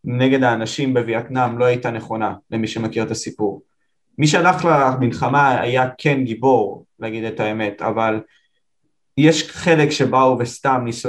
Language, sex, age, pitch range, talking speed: Hebrew, male, 20-39, 120-145 Hz, 135 wpm